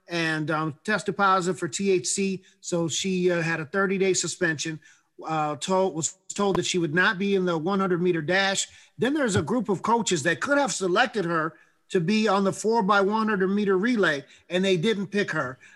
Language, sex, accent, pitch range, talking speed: English, male, American, 180-215 Hz, 190 wpm